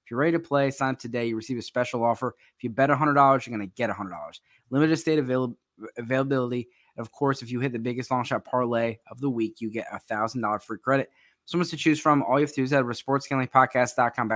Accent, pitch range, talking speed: American, 120-140 Hz, 270 wpm